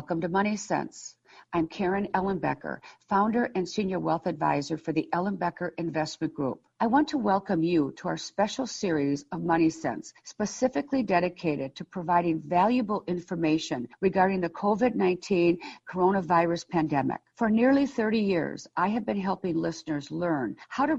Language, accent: English, American